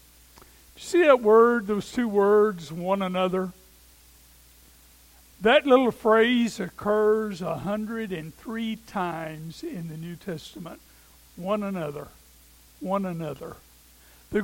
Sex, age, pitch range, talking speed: male, 60-79, 170-255 Hz, 95 wpm